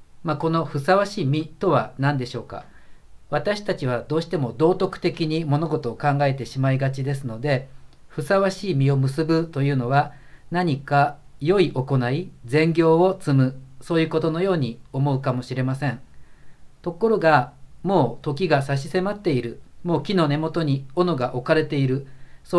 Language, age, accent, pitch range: Japanese, 40-59, native, 135-165 Hz